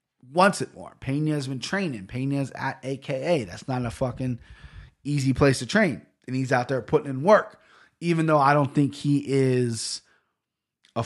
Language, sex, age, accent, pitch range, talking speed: English, male, 30-49, American, 125-160 Hz, 180 wpm